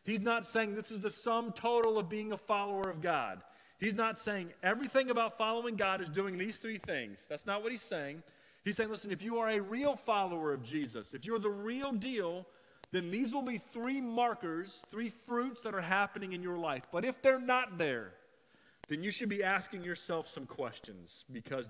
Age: 30-49